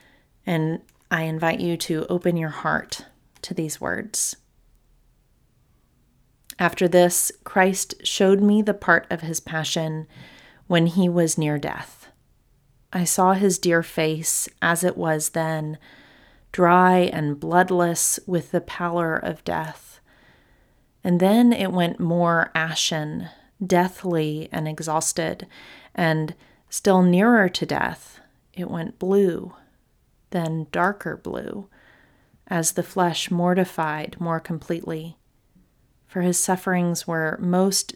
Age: 30-49